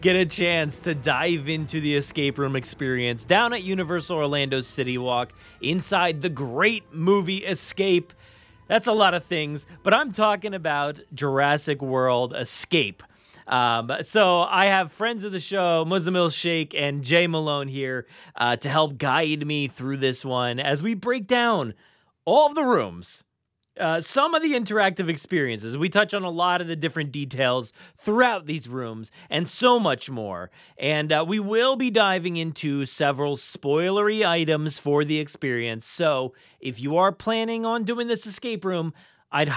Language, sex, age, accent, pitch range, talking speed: English, male, 30-49, American, 135-190 Hz, 165 wpm